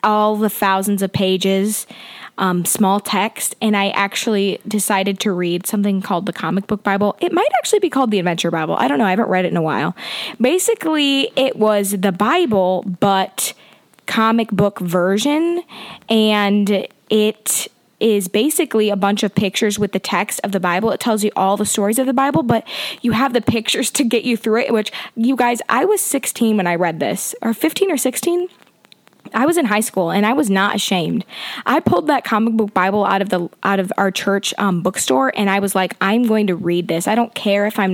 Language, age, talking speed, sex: English, 20-39, 210 wpm, female